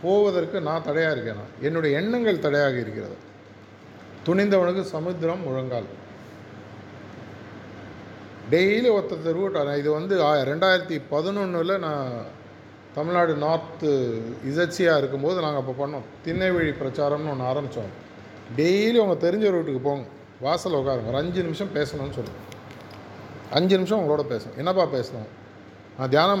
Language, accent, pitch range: Tamil, native, 115-165 Hz